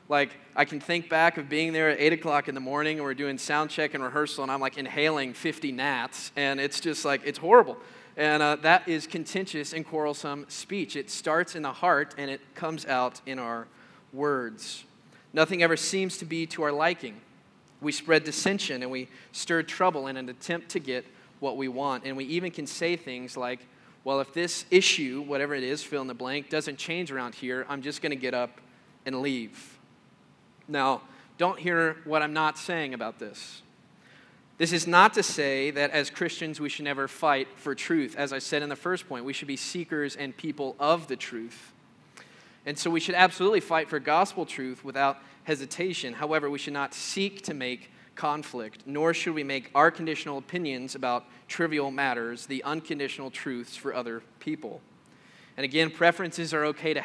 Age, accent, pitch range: 20-39, American, 135-165 Hz